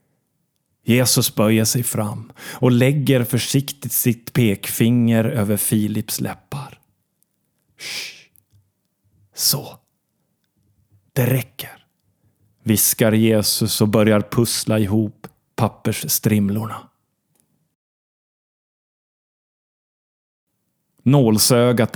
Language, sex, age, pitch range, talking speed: Swedish, male, 30-49, 115-155 Hz, 65 wpm